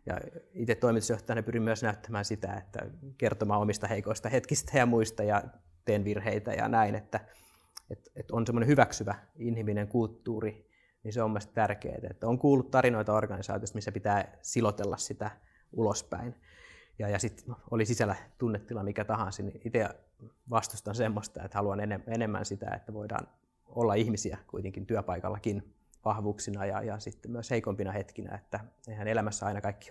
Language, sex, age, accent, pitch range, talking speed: Finnish, male, 20-39, native, 105-120 Hz, 150 wpm